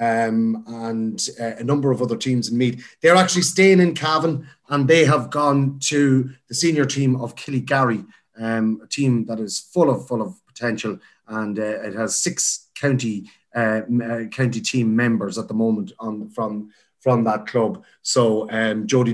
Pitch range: 115-140 Hz